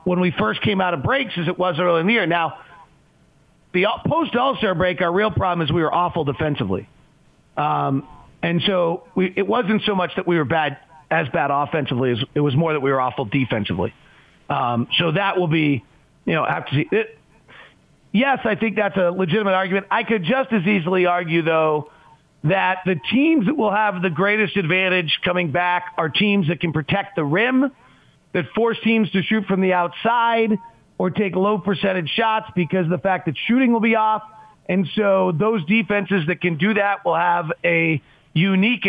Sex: male